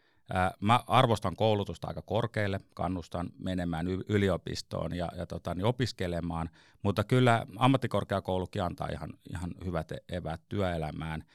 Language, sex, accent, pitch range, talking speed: Finnish, male, native, 90-110 Hz, 115 wpm